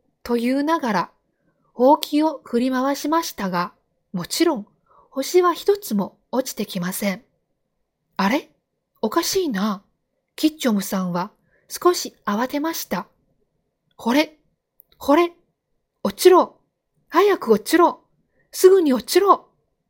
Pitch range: 210-320 Hz